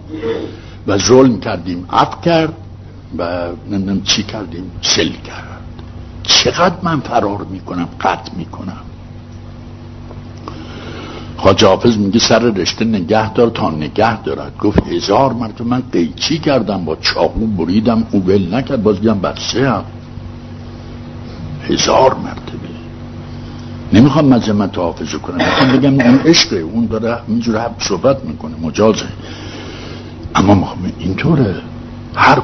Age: 60-79